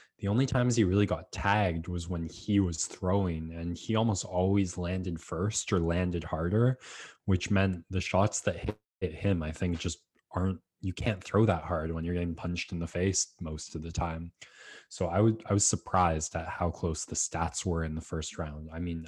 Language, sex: English, male